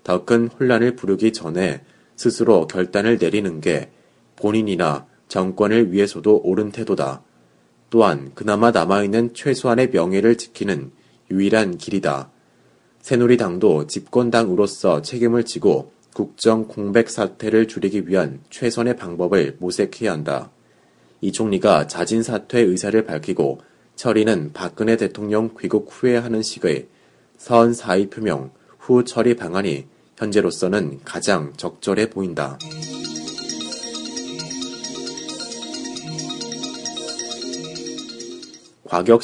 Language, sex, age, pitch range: Korean, male, 30-49, 90-115 Hz